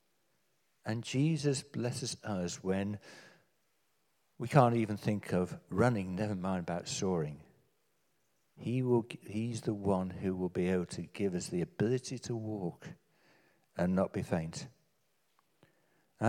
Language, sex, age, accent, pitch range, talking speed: English, male, 60-79, British, 95-145 Hz, 135 wpm